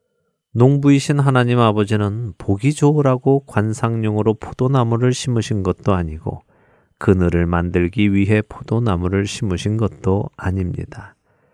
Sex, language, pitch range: male, Korean, 95-125 Hz